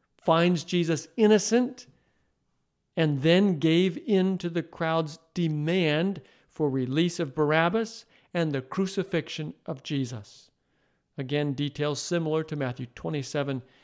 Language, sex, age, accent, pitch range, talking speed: English, male, 50-69, American, 140-185 Hz, 115 wpm